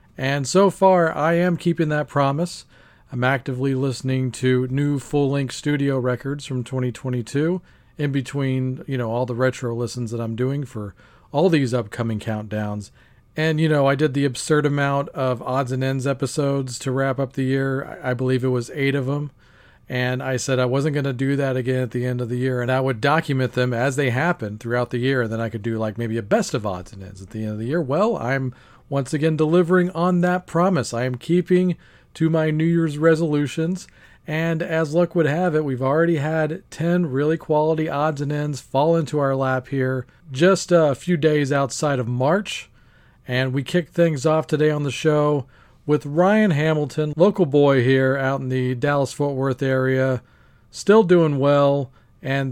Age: 40-59